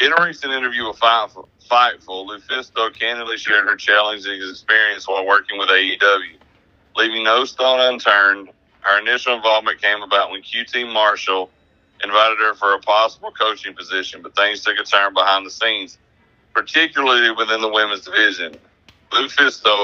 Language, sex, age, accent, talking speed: English, male, 40-59, American, 155 wpm